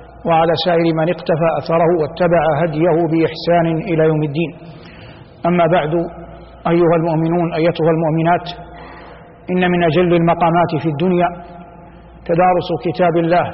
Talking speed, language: 115 wpm, Arabic